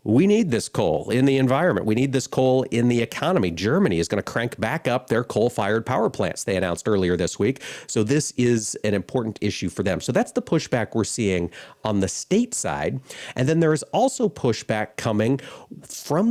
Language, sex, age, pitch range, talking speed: English, male, 40-59, 105-140 Hz, 200 wpm